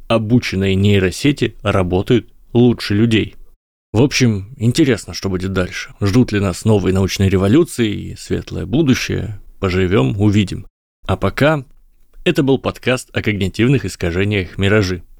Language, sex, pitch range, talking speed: Russian, male, 95-115 Hz, 120 wpm